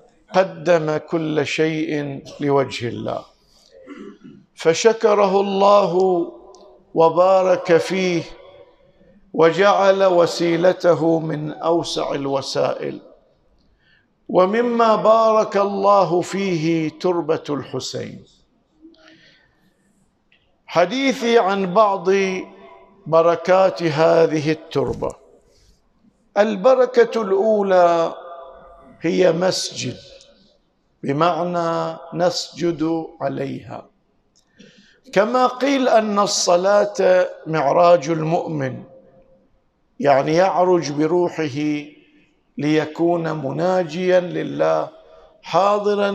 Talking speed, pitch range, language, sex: 60 wpm, 165-205 Hz, Arabic, male